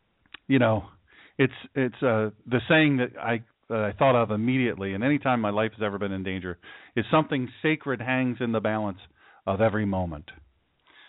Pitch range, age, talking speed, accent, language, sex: 100-115 Hz, 40-59, 185 wpm, American, English, male